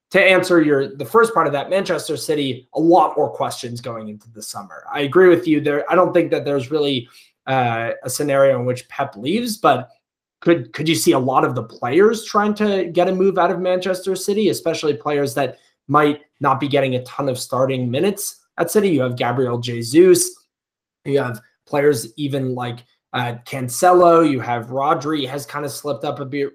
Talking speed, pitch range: 205 wpm, 130-175 Hz